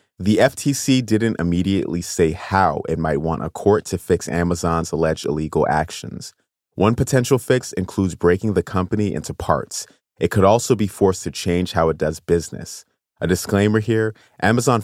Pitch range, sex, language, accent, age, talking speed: 85-105 Hz, male, English, American, 30-49, 165 wpm